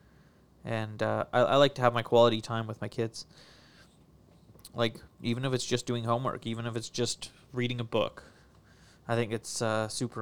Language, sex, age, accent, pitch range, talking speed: English, male, 20-39, American, 115-175 Hz, 190 wpm